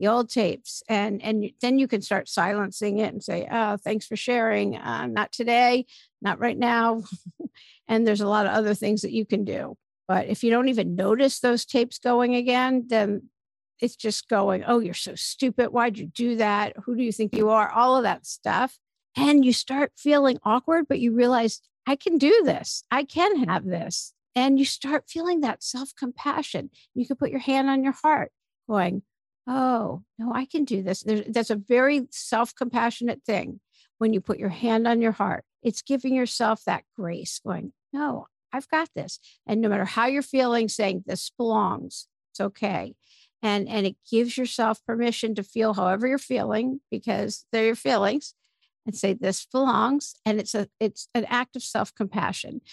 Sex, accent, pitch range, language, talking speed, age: female, American, 215-260 Hz, English, 190 wpm, 50-69